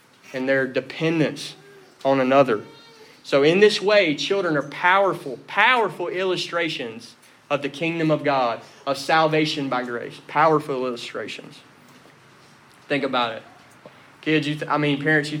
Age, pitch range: 30-49, 135-170 Hz